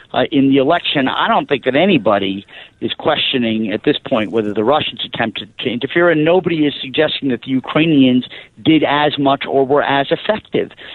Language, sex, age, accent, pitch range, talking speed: English, male, 50-69, American, 135-165 Hz, 185 wpm